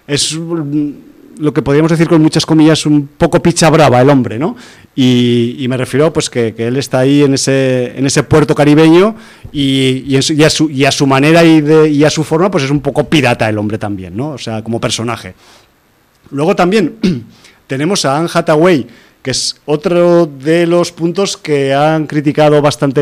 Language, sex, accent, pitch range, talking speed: Spanish, male, Spanish, 130-160 Hz, 180 wpm